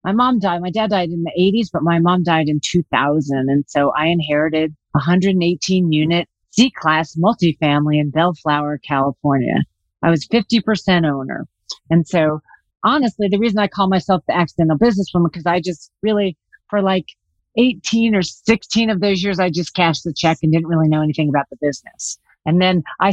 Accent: American